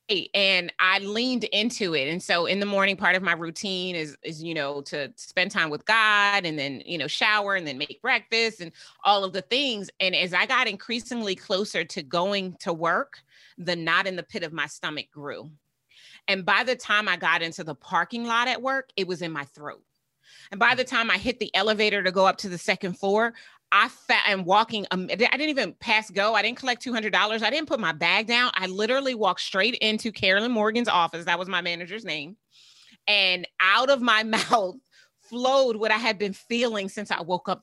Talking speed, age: 215 wpm, 30-49